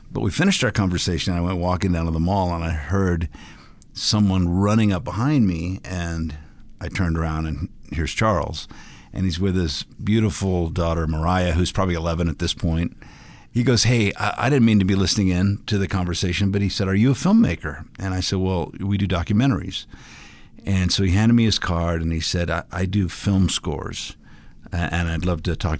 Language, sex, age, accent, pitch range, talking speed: English, male, 50-69, American, 85-105 Hz, 200 wpm